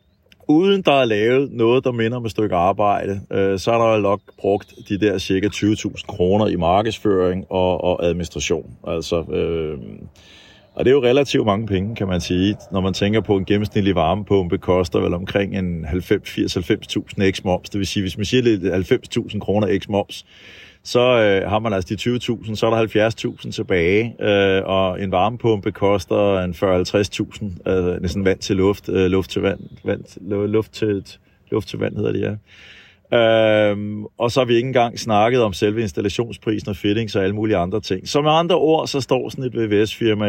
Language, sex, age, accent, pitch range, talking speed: Danish, male, 30-49, native, 95-110 Hz, 190 wpm